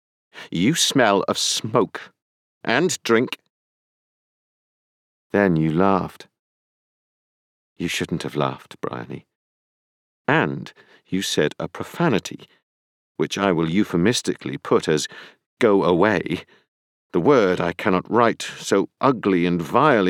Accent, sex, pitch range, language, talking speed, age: British, male, 85-130 Hz, English, 105 wpm, 50-69